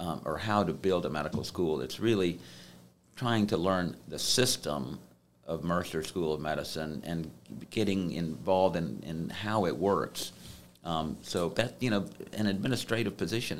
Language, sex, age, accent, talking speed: English, male, 50-69, American, 160 wpm